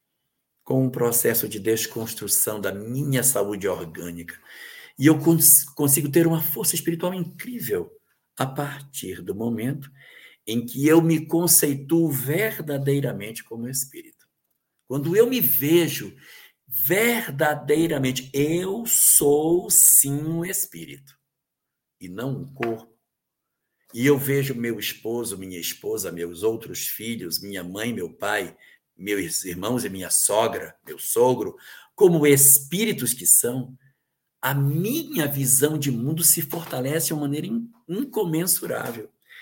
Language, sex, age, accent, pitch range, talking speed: Portuguese, male, 60-79, Brazilian, 125-180 Hz, 120 wpm